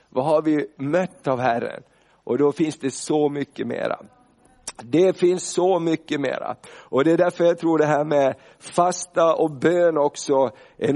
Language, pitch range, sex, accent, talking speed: Swedish, 145-180 Hz, male, native, 175 wpm